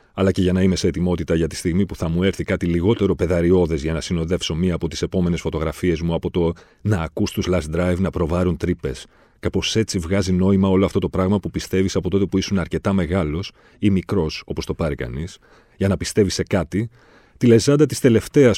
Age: 40-59